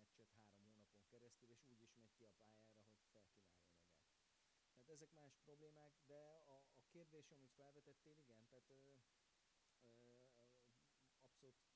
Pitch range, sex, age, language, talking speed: 110-130 Hz, male, 30-49, Hungarian, 135 wpm